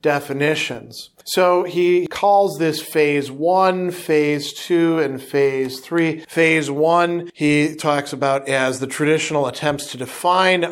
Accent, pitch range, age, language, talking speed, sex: American, 140-180 Hz, 40-59, English, 130 wpm, male